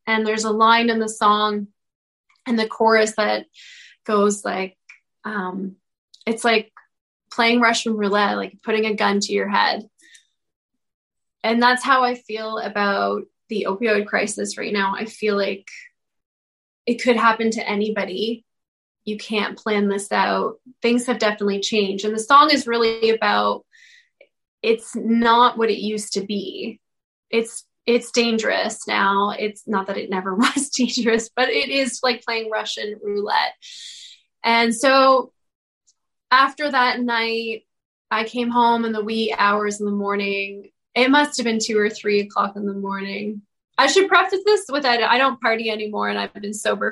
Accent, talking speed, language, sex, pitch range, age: American, 160 wpm, English, female, 210-255 Hz, 20-39